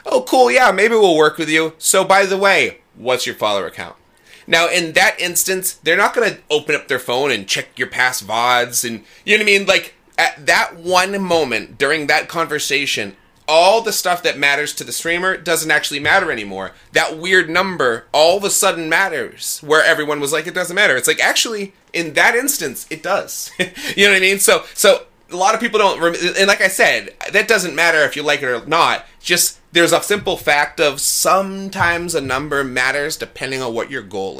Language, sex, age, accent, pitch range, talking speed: English, male, 30-49, American, 145-195 Hz, 215 wpm